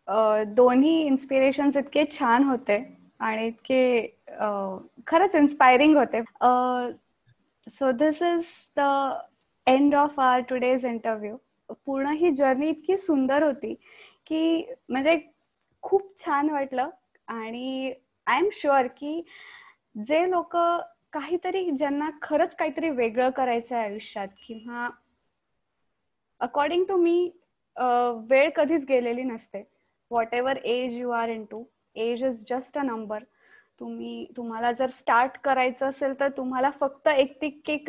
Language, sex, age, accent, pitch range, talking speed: Marathi, female, 20-39, native, 245-310 Hz, 120 wpm